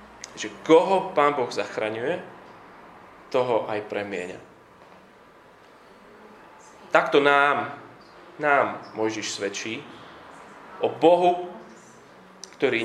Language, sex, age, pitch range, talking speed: Slovak, male, 20-39, 130-170 Hz, 70 wpm